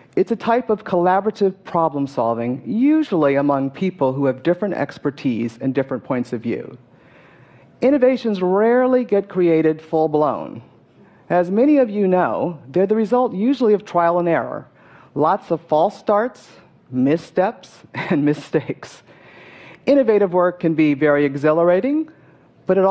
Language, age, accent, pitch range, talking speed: English, 50-69, American, 150-225 Hz, 135 wpm